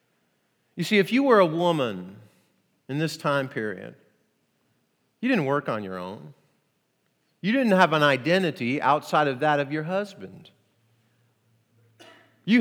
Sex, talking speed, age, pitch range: male, 140 wpm, 40-59, 155-250 Hz